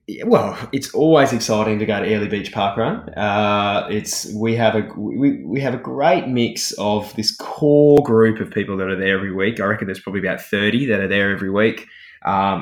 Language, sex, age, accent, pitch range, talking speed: English, male, 20-39, Australian, 100-130 Hz, 220 wpm